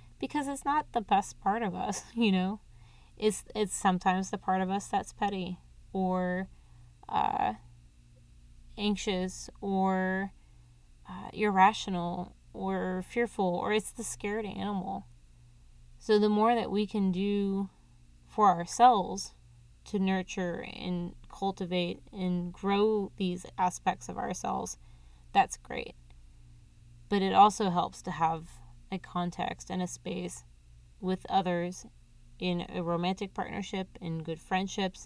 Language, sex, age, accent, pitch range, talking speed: English, female, 20-39, American, 115-195 Hz, 125 wpm